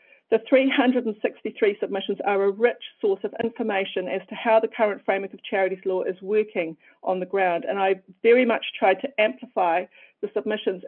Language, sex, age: English, female, 40-59